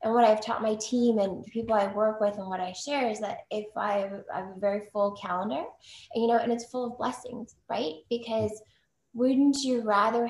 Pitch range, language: 200-245 Hz, English